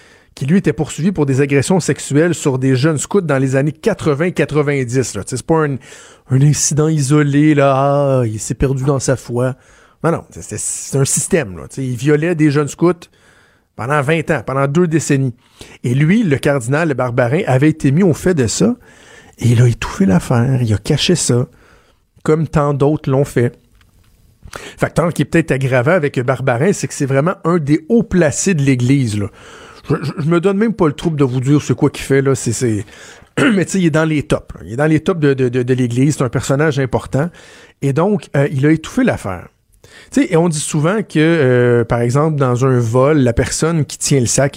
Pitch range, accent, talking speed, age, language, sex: 130-155 Hz, Canadian, 215 wpm, 50-69, French, male